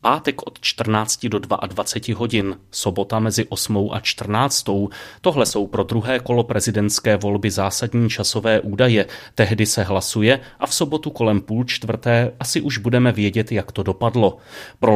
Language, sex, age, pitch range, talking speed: Czech, male, 30-49, 105-120 Hz, 155 wpm